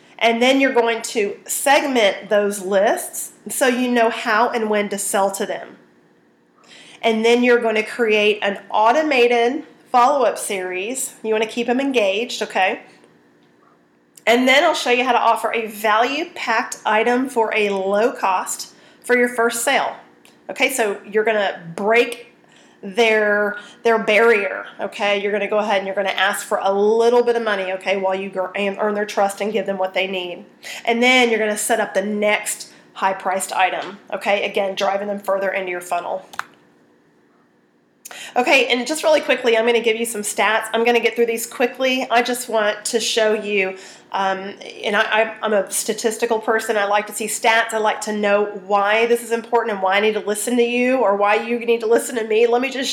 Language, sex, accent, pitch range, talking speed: English, female, American, 200-235 Hz, 200 wpm